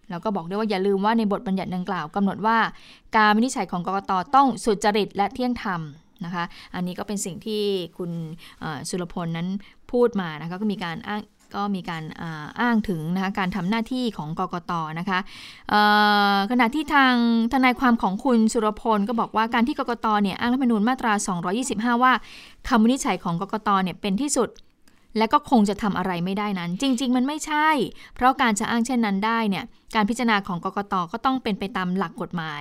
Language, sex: Thai, female